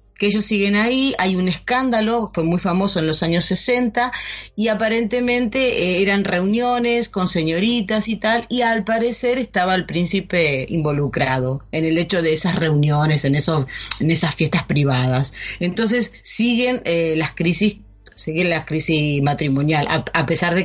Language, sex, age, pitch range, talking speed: Spanish, female, 30-49, 155-200 Hz, 160 wpm